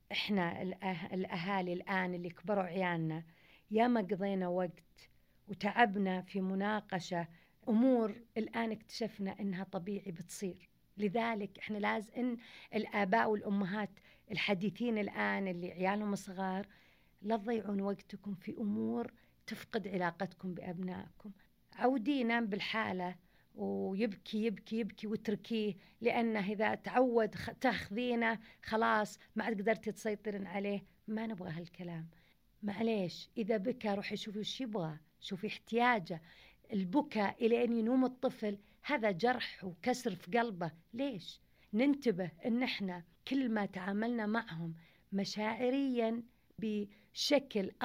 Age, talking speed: 50-69, 105 wpm